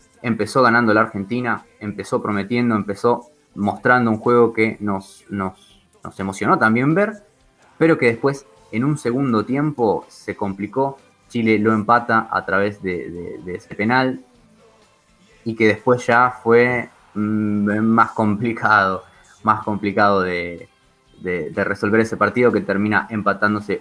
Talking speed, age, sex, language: 130 wpm, 20-39, male, Spanish